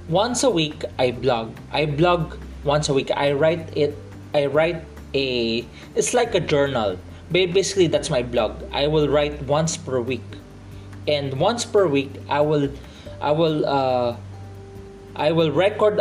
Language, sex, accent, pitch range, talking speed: English, male, Filipino, 100-165 Hz, 155 wpm